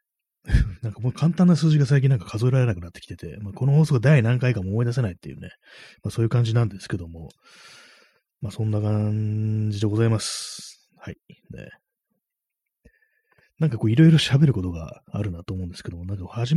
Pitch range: 100-135 Hz